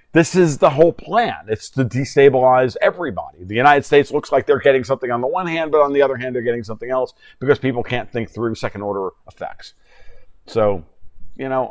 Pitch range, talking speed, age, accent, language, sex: 110-140 Hz, 210 wpm, 50-69, American, English, male